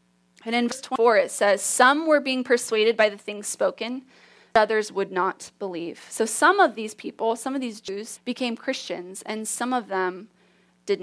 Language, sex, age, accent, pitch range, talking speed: English, female, 20-39, American, 195-240 Hz, 190 wpm